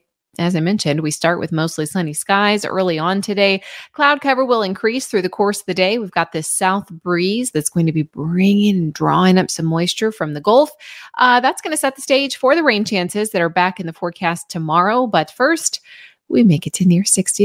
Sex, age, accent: female, 30-49, American